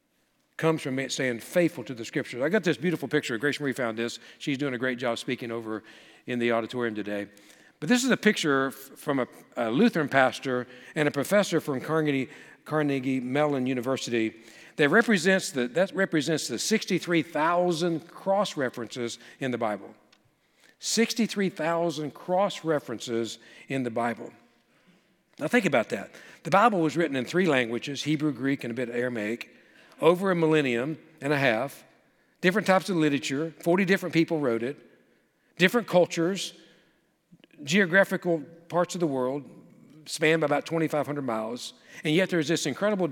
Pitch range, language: 125-175 Hz, English